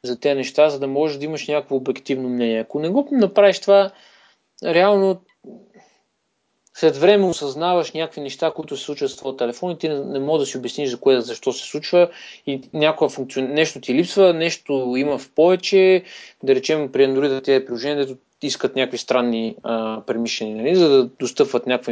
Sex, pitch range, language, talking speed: male, 135-180 Hz, Bulgarian, 180 wpm